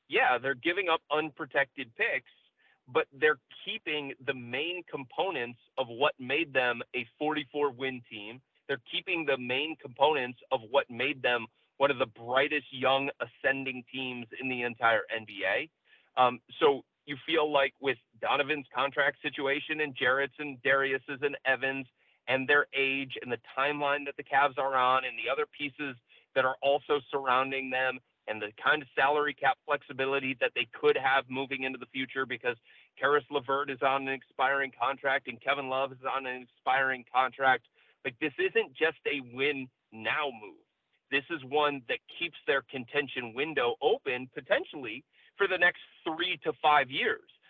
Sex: male